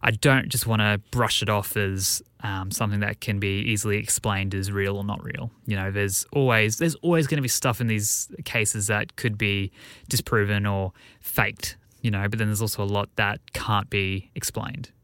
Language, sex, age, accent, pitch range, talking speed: English, male, 10-29, Australian, 105-130 Hz, 210 wpm